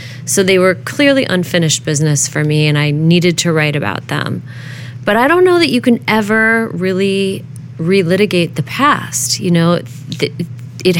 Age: 30-49